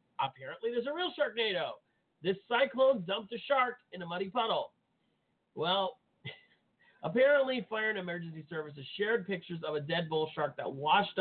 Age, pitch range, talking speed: 40-59, 145-195 Hz, 155 wpm